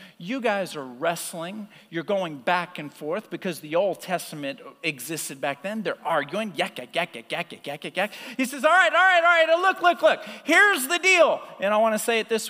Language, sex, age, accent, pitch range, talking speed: English, male, 40-59, American, 220-325 Hz, 220 wpm